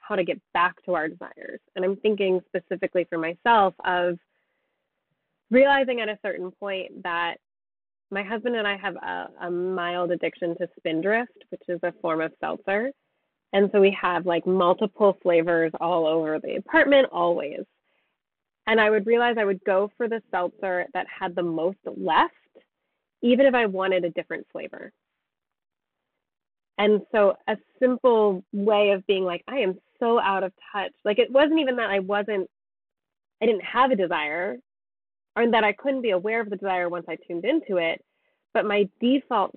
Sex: female